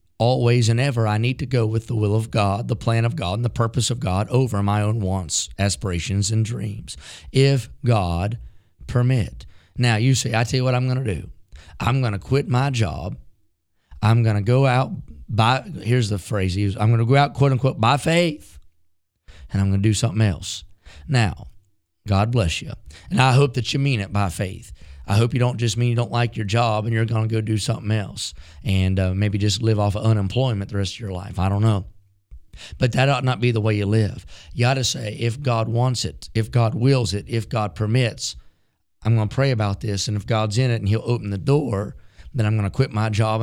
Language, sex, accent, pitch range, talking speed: English, male, American, 100-120 Hz, 235 wpm